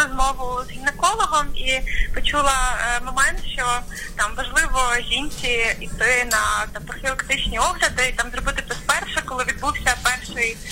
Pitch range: 255-320 Hz